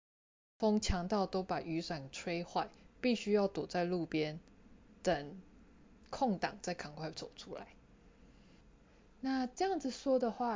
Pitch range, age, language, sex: 170-230 Hz, 20-39, Chinese, female